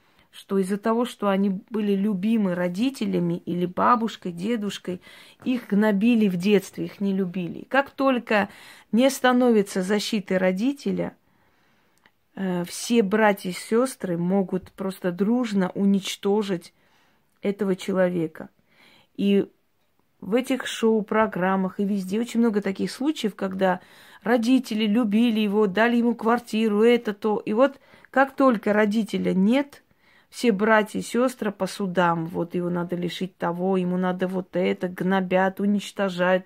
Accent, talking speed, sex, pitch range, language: native, 125 wpm, female, 185-225 Hz, Russian